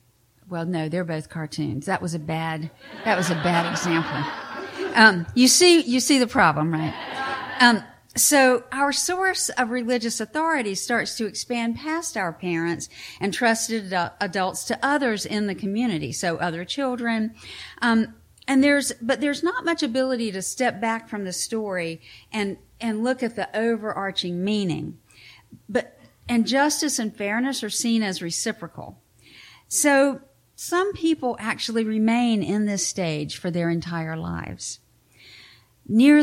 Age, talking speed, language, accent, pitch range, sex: 50-69, 150 wpm, English, American, 165-245 Hz, female